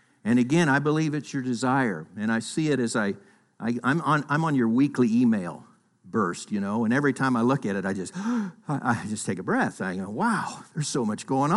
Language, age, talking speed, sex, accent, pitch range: English, 60-79, 235 wpm, male, American, 130-195 Hz